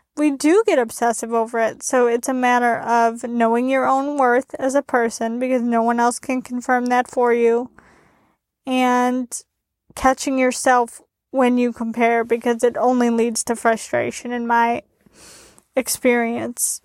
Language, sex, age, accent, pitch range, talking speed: English, female, 20-39, American, 245-280 Hz, 150 wpm